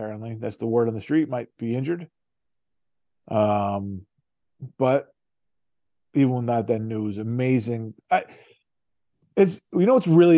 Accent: American